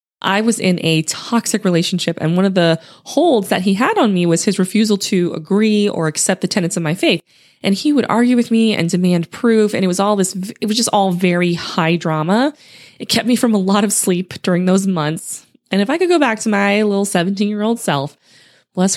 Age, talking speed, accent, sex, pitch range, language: 20-39, 235 wpm, American, female, 170-220 Hz, English